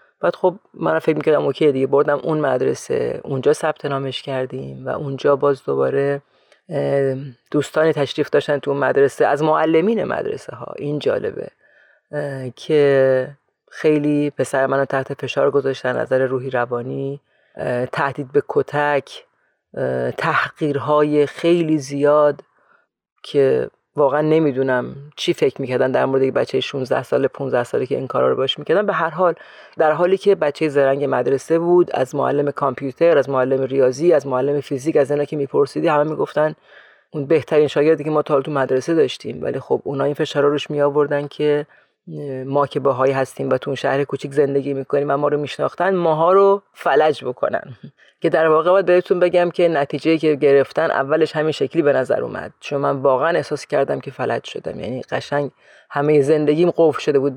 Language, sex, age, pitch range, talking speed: Persian, female, 30-49, 140-160 Hz, 165 wpm